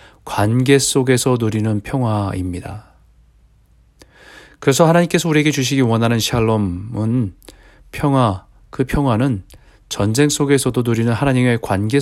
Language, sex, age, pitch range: Korean, male, 40-59, 105-140 Hz